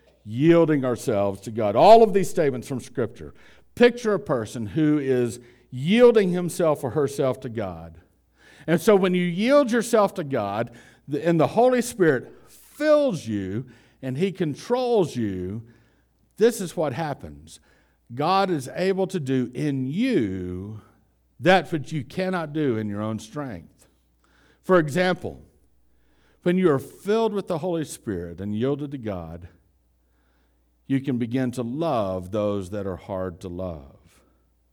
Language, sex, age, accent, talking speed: English, male, 60-79, American, 145 wpm